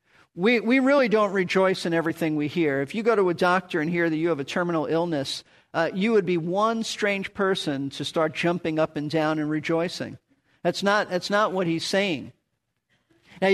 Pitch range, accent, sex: 165-220 Hz, American, male